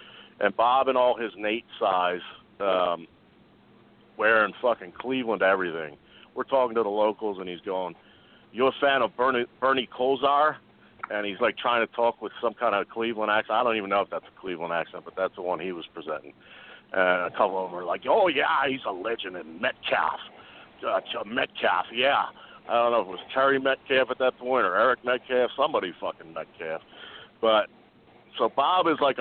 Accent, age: American, 50-69